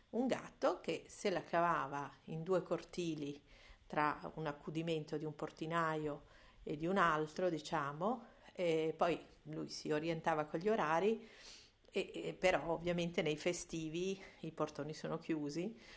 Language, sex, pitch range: Italian, female, 160-195 Hz